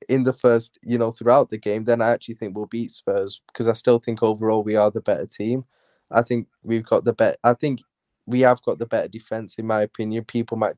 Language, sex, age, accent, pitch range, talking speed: English, male, 10-29, British, 110-125 Hz, 245 wpm